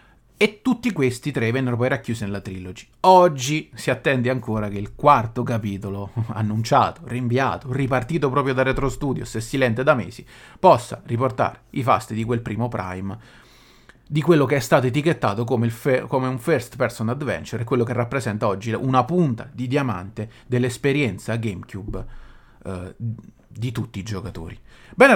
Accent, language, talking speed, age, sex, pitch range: native, Italian, 160 wpm, 30-49, male, 115-150 Hz